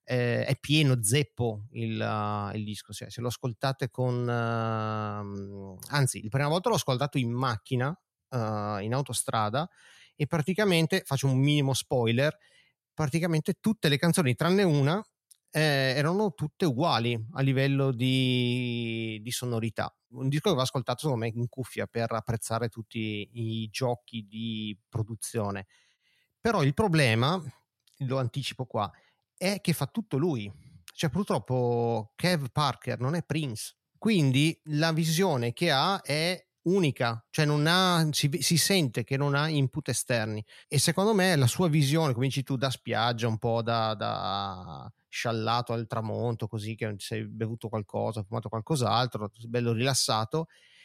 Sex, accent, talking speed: male, native, 145 wpm